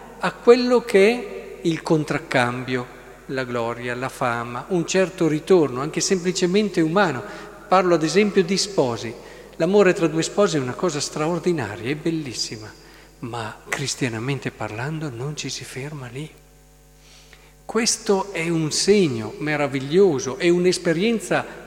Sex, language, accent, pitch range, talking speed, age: male, Italian, native, 140-195 Hz, 125 wpm, 50-69